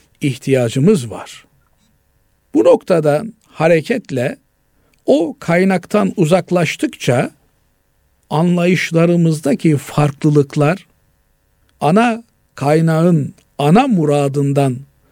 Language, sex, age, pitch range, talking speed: Turkish, male, 60-79, 130-195 Hz, 55 wpm